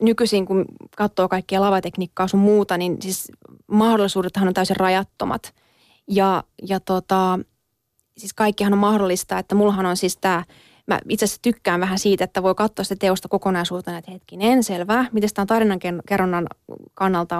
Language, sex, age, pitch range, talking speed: Finnish, female, 20-39, 185-210 Hz, 150 wpm